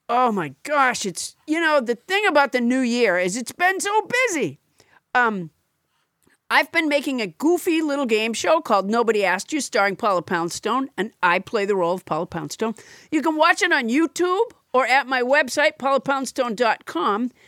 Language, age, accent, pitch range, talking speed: English, 50-69, American, 210-290 Hz, 180 wpm